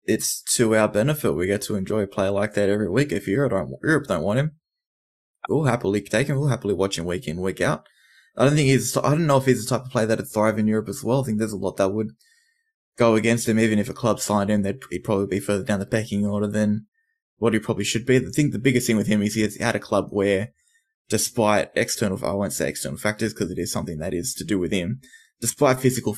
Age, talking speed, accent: 20-39, 260 wpm, Australian